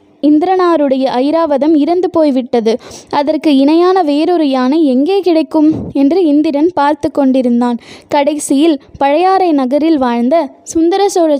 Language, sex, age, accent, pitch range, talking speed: Tamil, female, 20-39, native, 265-325 Hz, 100 wpm